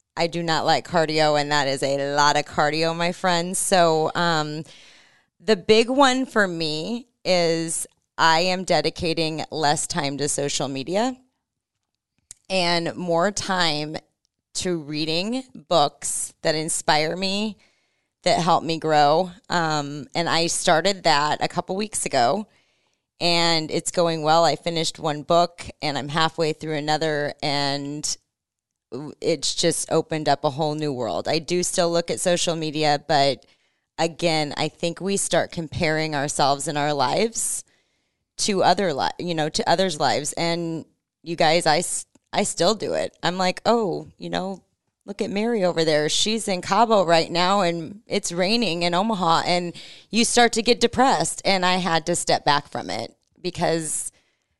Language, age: English, 20-39